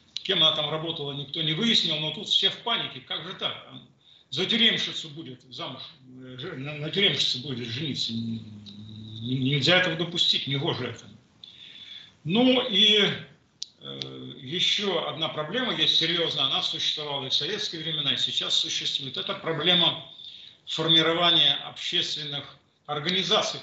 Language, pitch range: Russian, 130-175 Hz